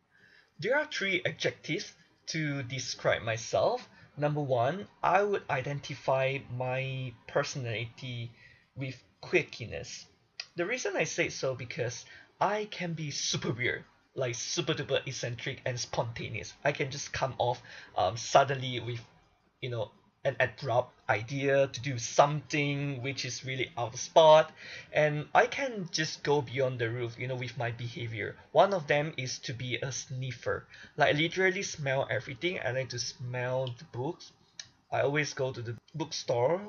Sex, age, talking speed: male, 20-39, 150 wpm